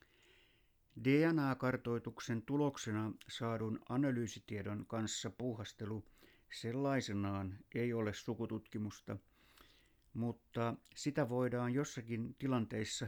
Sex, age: male, 60-79